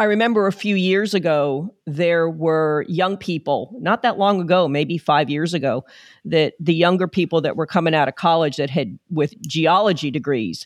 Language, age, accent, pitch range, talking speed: English, 40-59, American, 150-180 Hz, 185 wpm